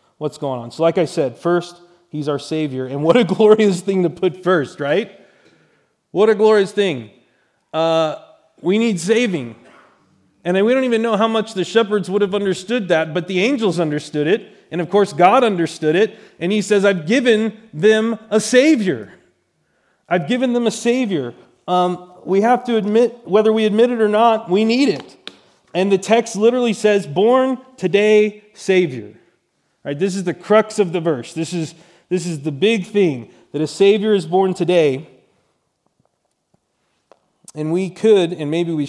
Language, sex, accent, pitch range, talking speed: English, male, American, 150-210 Hz, 175 wpm